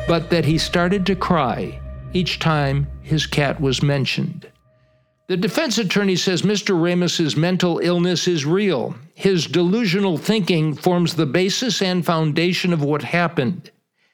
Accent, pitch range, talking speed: American, 150-180 Hz, 140 wpm